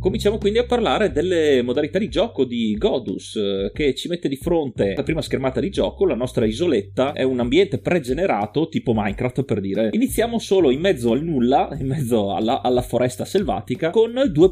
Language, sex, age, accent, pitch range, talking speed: Italian, male, 30-49, native, 120-185 Hz, 185 wpm